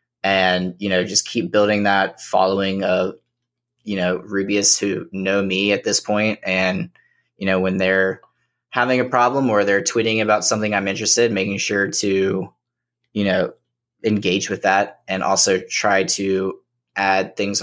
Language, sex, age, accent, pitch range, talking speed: English, male, 20-39, American, 95-115 Hz, 165 wpm